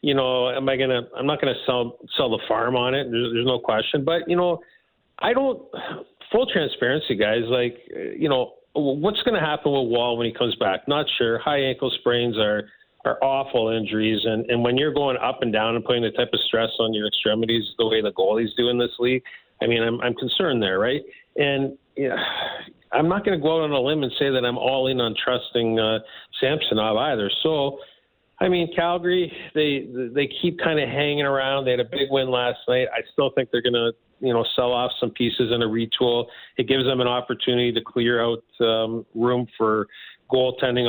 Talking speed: 215 wpm